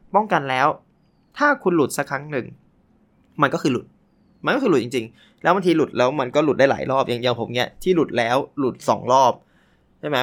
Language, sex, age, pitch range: Thai, male, 20-39, 130-180 Hz